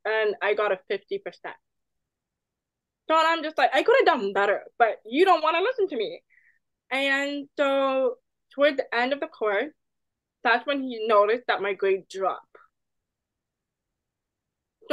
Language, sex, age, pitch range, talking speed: English, female, 20-39, 215-305 Hz, 155 wpm